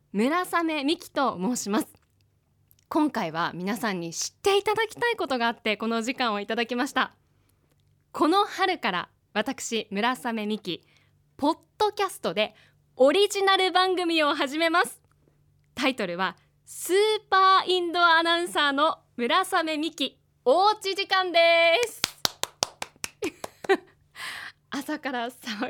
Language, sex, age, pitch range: Japanese, female, 20-39, 215-340 Hz